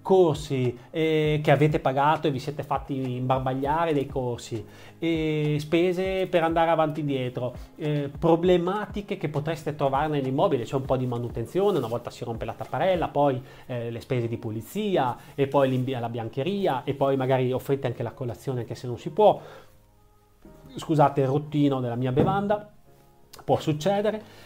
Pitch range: 120-160 Hz